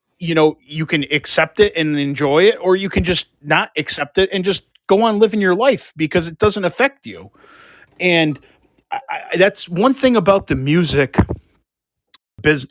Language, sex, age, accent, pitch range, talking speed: English, male, 30-49, American, 135-180 Hz, 180 wpm